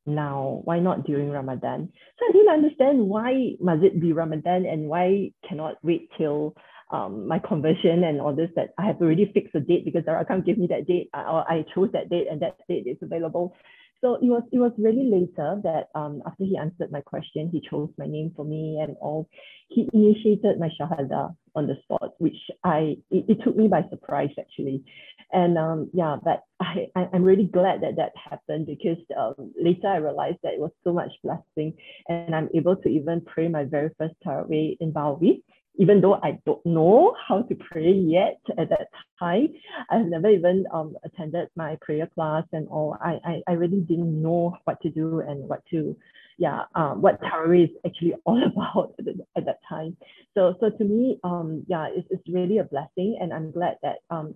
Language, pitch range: English, 155-185 Hz